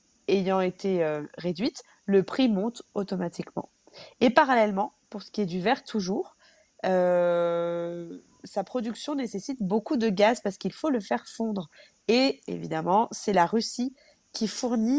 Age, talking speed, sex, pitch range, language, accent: 20-39, 145 wpm, female, 175-230 Hz, French, French